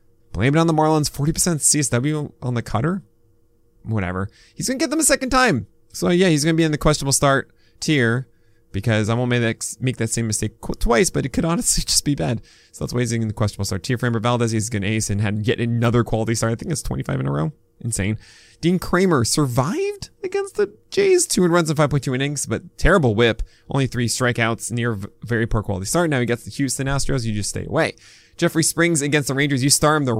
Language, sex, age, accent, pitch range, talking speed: English, male, 20-39, American, 115-155 Hz, 235 wpm